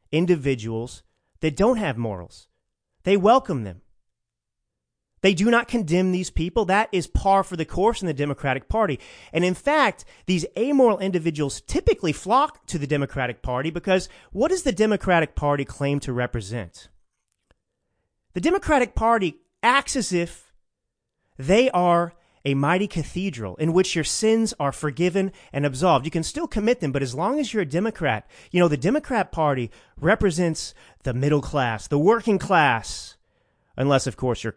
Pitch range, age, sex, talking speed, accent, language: 135-200 Hz, 30-49, male, 160 wpm, American, English